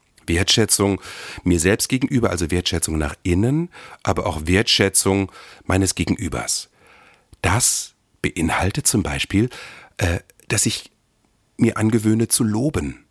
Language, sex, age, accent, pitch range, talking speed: German, male, 40-59, German, 90-110 Hz, 110 wpm